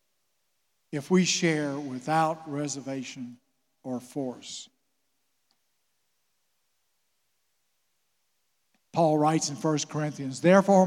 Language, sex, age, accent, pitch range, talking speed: German, male, 50-69, American, 155-220 Hz, 70 wpm